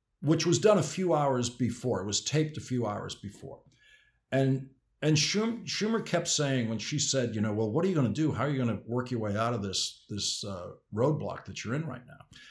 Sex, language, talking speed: male, English, 245 wpm